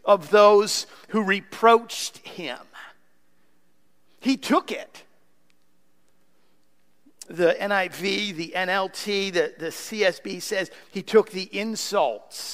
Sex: male